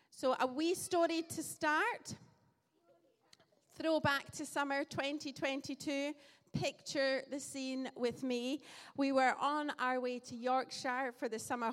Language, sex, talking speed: English, female, 135 wpm